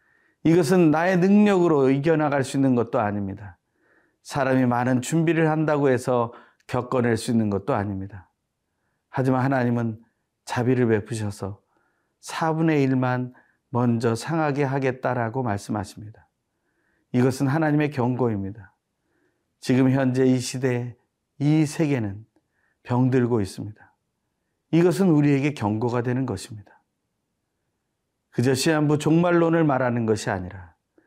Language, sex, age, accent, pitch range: Korean, male, 40-59, native, 115-145 Hz